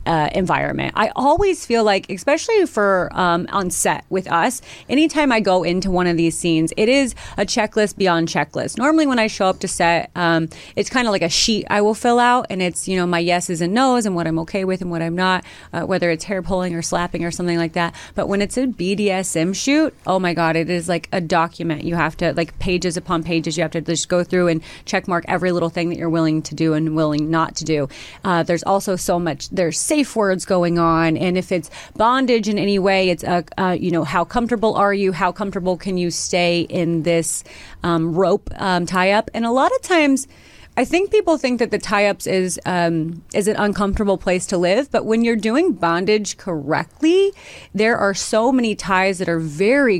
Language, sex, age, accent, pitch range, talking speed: English, female, 30-49, American, 170-210 Hz, 225 wpm